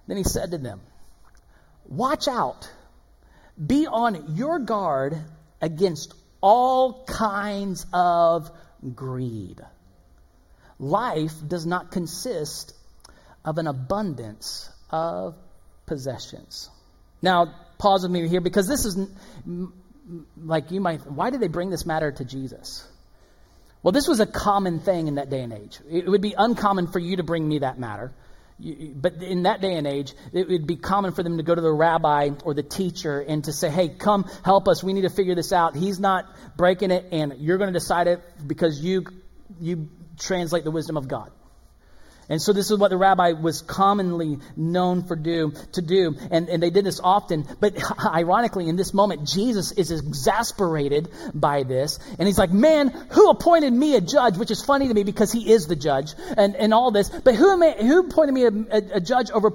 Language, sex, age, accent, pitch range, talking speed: English, male, 40-59, American, 155-210 Hz, 180 wpm